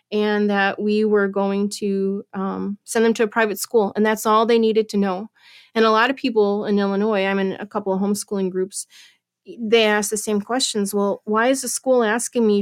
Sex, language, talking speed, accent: female, English, 220 wpm, American